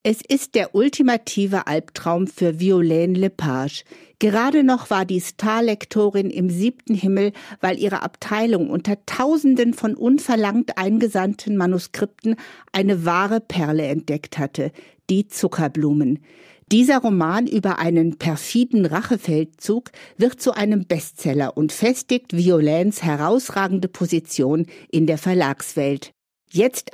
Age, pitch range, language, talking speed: 50-69, 160-225 Hz, German, 115 wpm